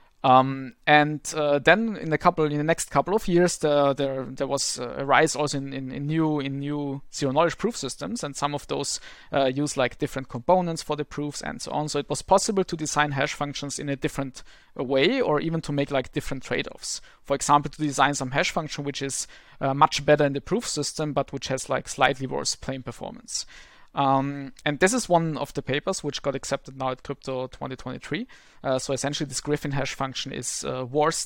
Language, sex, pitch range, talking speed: English, male, 135-155 Hz, 215 wpm